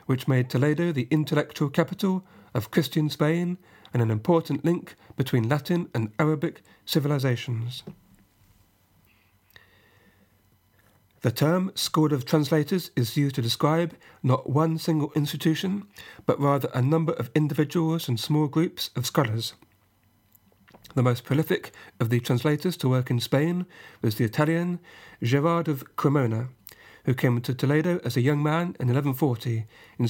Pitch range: 115-155 Hz